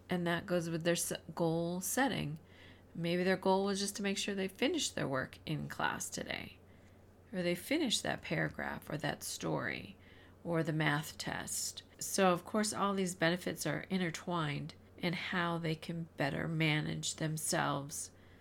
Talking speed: 160 wpm